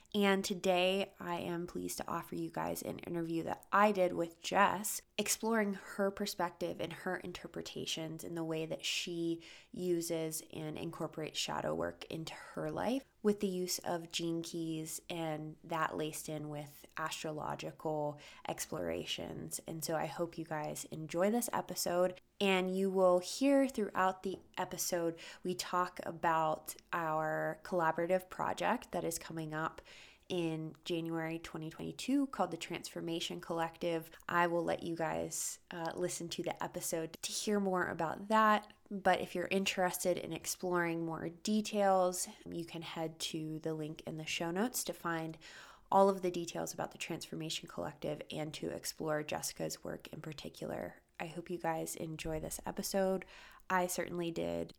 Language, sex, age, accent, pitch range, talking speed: English, female, 20-39, American, 160-185 Hz, 155 wpm